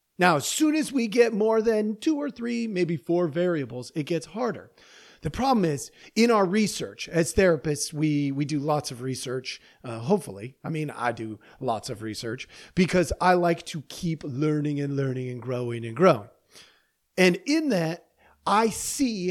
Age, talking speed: 40-59, 175 wpm